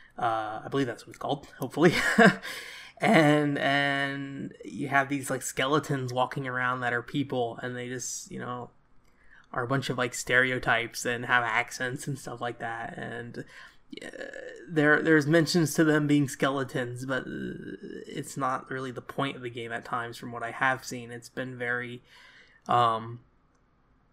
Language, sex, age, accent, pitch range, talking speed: English, male, 20-39, American, 120-150 Hz, 165 wpm